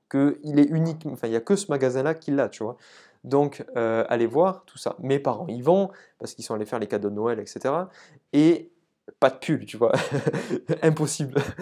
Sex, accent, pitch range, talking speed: male, French, 125-165 Hz, 200 wpm